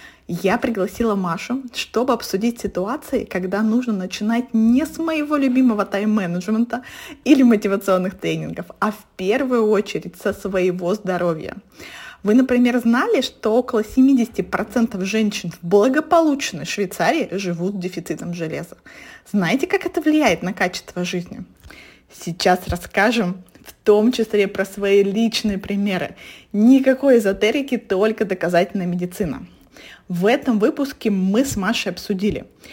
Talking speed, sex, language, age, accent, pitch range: 120 wpm, female, Russian, 20-39, native, 190-250 Hz